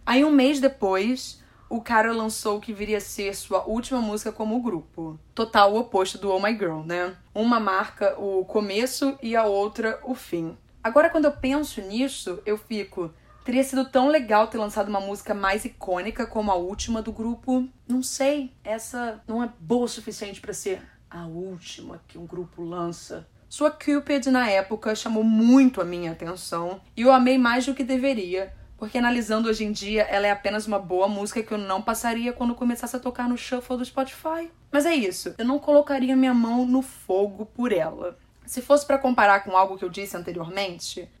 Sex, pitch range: female, 200-255 Hz